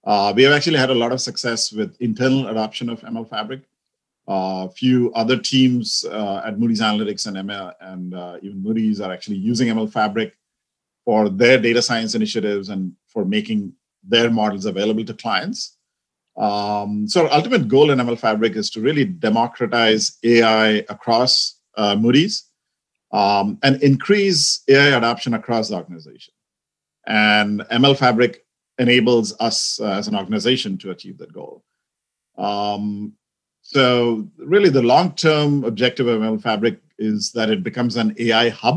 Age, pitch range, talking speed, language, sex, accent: 50-69, 105-125 Hz, 155 wpm, English, male, Indian